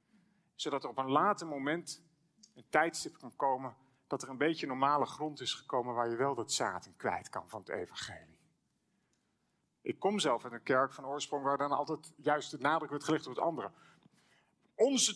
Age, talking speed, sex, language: 40-59, 195 wpm, male, Dutch